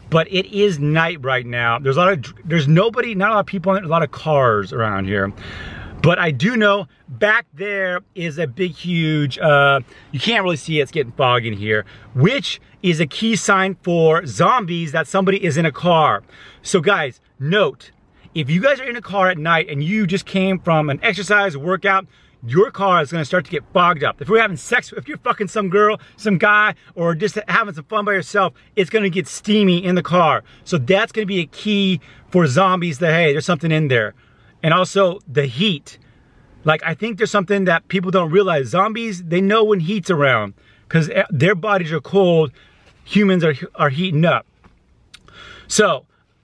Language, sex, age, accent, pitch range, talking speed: English, male, 30-49, American, 150-200 Hz, 200 wpm